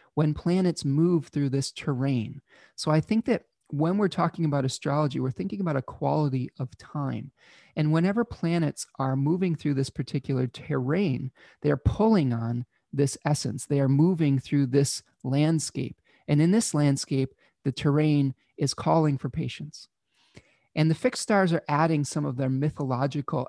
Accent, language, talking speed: American, English, 160 wpm